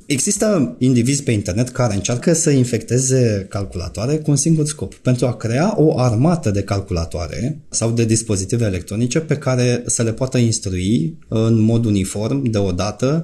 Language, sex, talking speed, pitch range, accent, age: Romanian, male, 155 wpm, 95-135 Hz, native, 20-39